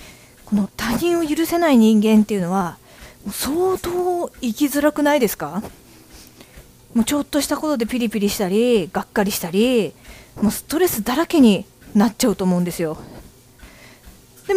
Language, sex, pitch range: Japanese, female, 215-295 Hz